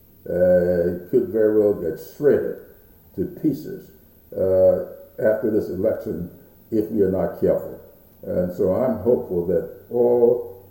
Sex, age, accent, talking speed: male, 60-79, American, 135 wpm